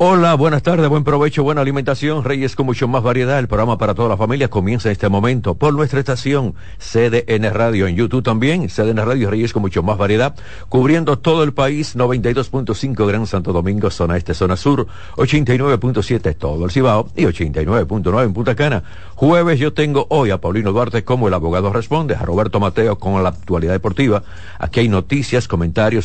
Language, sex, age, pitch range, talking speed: Spanish, male, 60-79, 95-125 Hz, 185 wpm